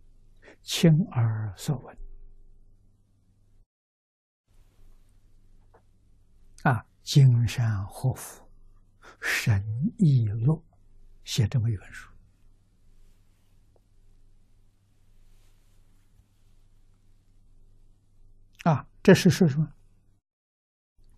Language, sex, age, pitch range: Chinese, male, 60-79, 100-135 Hz